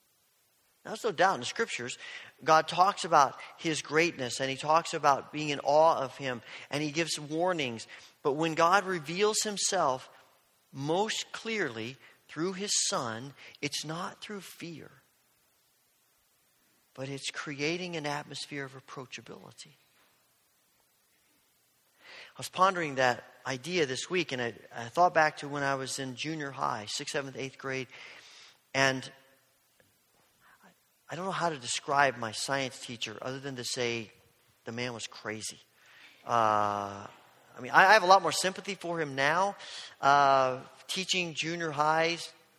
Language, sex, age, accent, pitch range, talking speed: English, male, 40-59, American, 135-185 Hz, 145 wpm